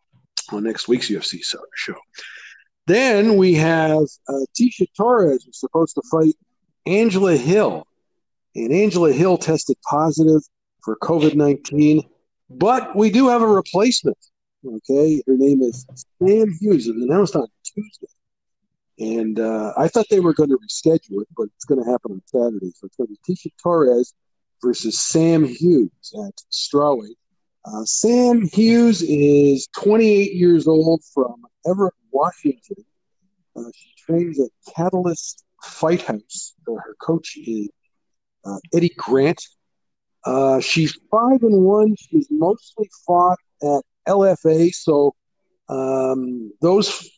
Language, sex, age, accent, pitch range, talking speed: English, male, 50-69, American, 130-195 Hz, 135 wpm